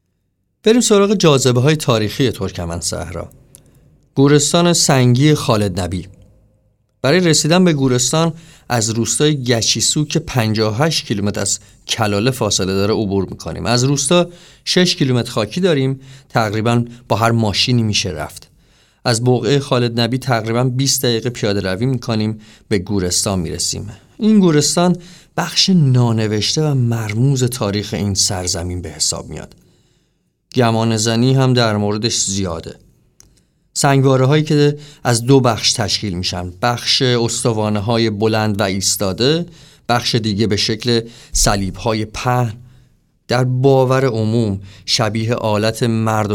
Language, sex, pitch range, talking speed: Persian, male, 105-135 Hz, 125 wpm